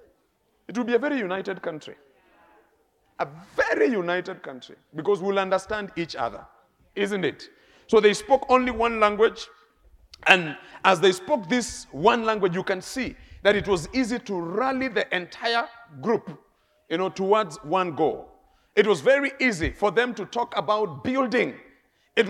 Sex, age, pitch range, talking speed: male, 50-69, 195-275 Hz, 160 wpm